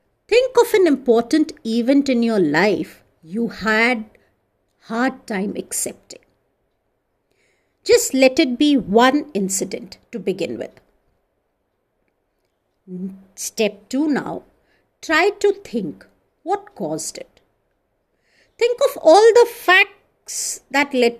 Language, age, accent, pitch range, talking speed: English, 50-69, Indian, 215-305 Hz, 110 wpm